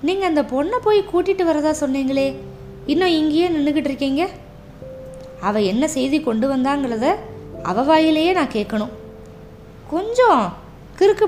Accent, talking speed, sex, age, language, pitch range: native, 115 wpm, female, 20-39, Tamil, 195-280 Hz